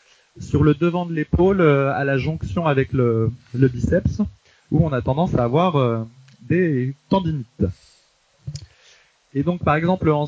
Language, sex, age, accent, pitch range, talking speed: French, male, 20-39, French, 120-155 Hz, 160 wpm